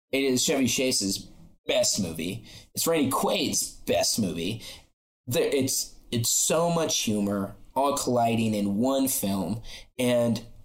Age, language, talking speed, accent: 20-39, English, 125 wpm, American